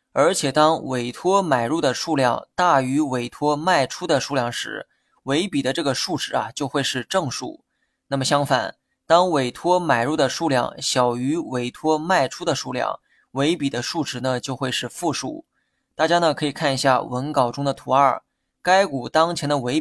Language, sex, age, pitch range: Chinese, male, 20-39, 130-165 Hz